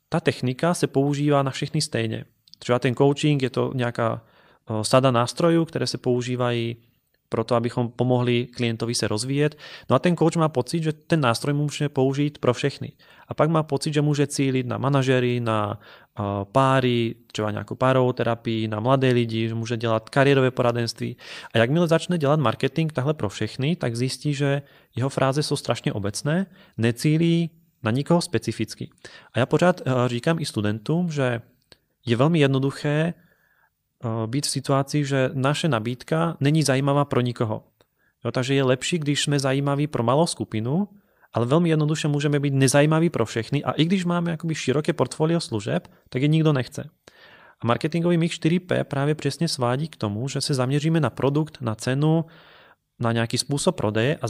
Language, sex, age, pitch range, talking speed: Czech, male, 30-49, 120-155 Hz, 170 wpm